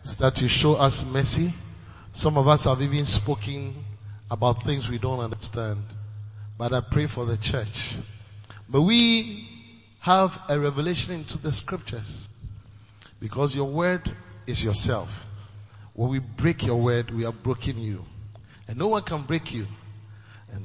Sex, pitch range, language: male, 105-150 Hz, English